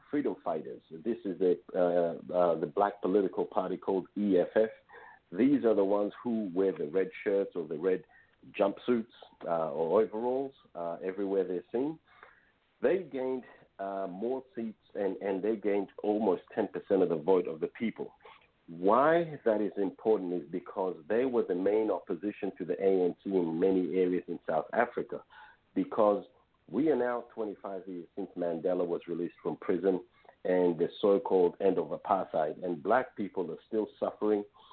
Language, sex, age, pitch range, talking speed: English, male, 50-69, 90-120 Hz, 160 wpm